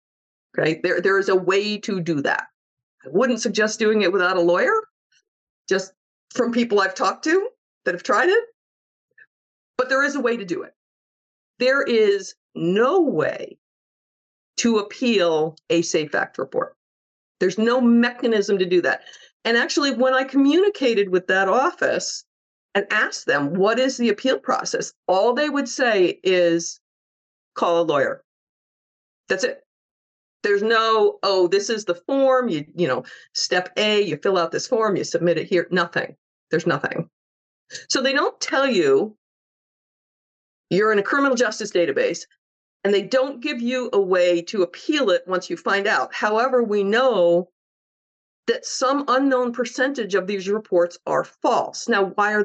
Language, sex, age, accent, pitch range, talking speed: English, female, 50-69, American, 185-260 Hz, 160 wpm